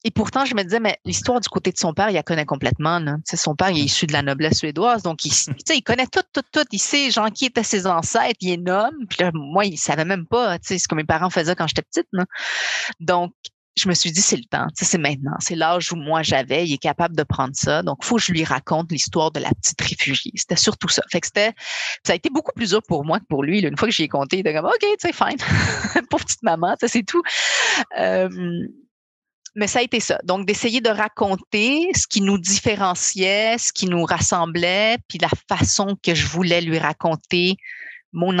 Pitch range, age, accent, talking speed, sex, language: 160-210 Hz, 30-49, Canadian, 240 wpm, female, French